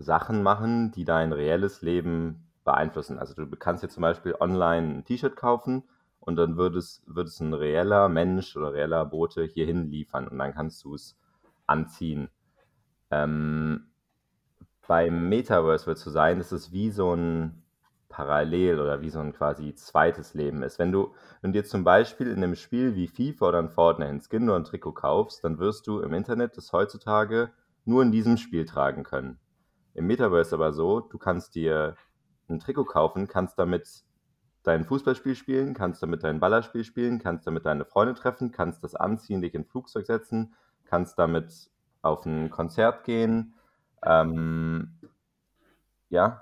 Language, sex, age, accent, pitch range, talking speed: German, male, 30-49, German, 80-110 Hz, 165 wpm